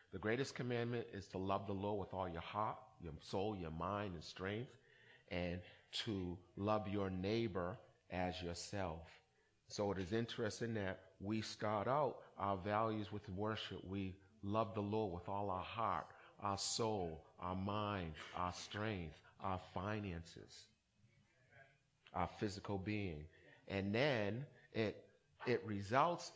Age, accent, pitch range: 40-59, American, 95-115 Hz